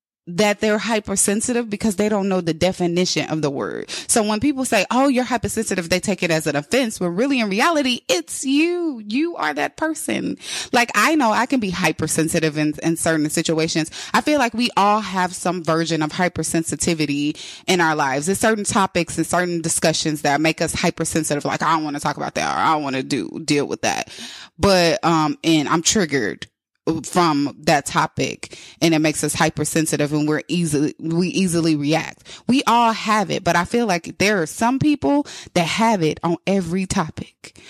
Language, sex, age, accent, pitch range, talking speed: English, female, 20-39, American, 160-220 Hz, 195 wpm